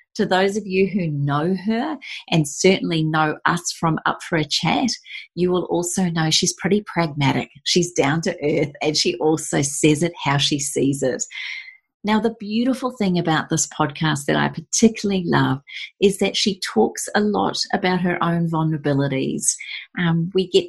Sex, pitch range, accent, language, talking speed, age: female, 150-200 Hz, Australian, English, 175 wpm, 40-59